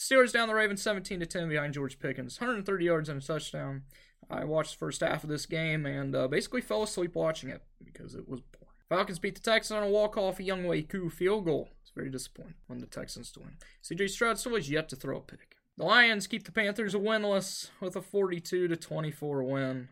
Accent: American